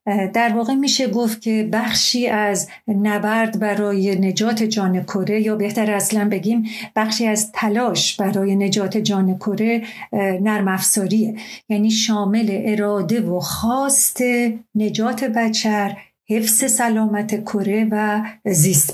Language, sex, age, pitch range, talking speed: Persian, female, 50-69, 200-235 Hz, 115 wpm